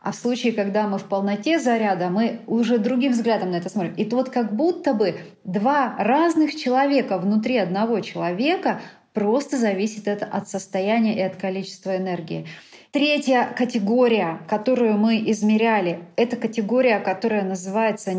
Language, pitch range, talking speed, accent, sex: Russian, 195-250 Hz, 150 wpm, native, female